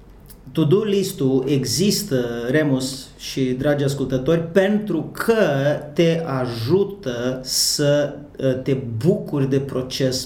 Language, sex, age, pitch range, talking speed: Romanian, male, 30-49, 135-175 Hz, 90 wpm